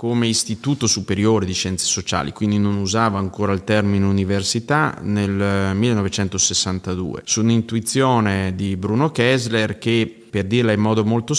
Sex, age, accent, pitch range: male, 30-49, native, 100-115 Hz